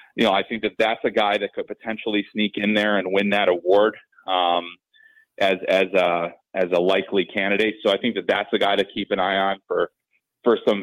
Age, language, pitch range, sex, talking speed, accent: 30-49, English, 95-110 Hz, male, 225 wpm, American